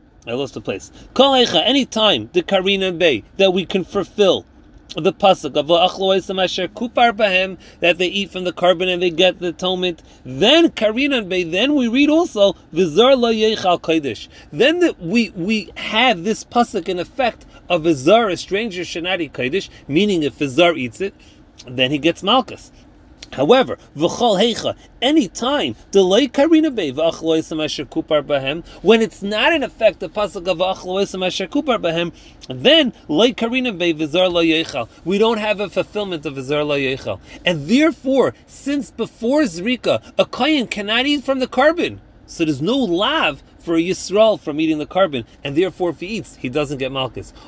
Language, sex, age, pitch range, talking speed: English, male, 40-59, 170-235 Hz, 150 wpm